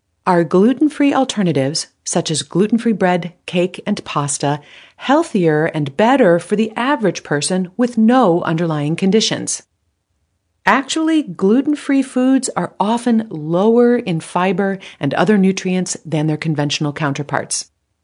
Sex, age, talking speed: female, 40-59, 120 wpm